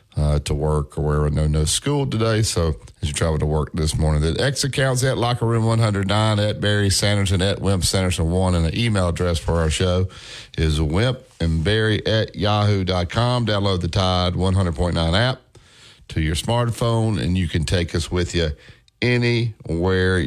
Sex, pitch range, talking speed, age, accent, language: male, 90-115 Hz, 180 wpm, 50-69, American, English